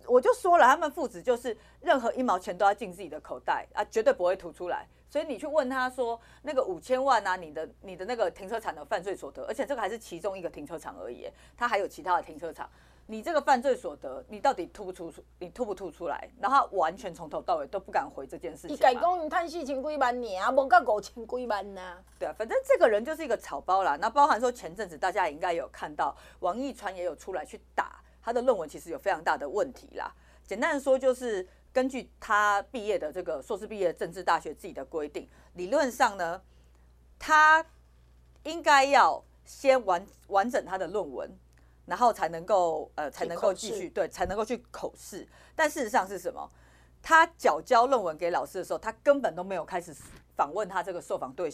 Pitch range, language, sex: 185-285 Hz, Chinese, female